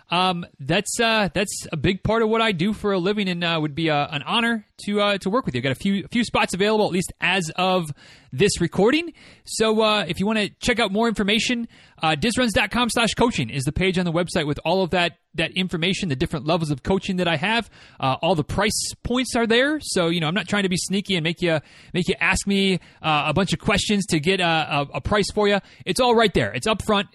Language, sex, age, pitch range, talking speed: English, male, 30-49, 155-205 Hz, 260 wpm